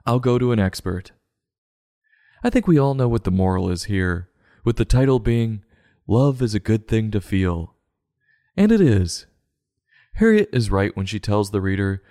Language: English